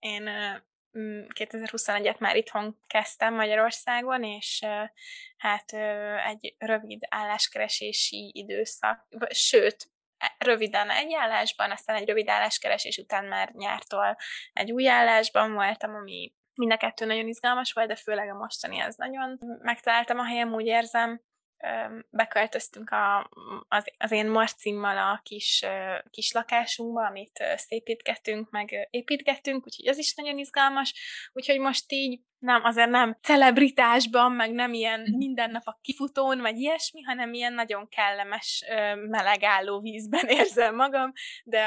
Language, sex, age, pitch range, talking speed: Hungarian, female, 10-29, 210-250 Hz, 120 wpm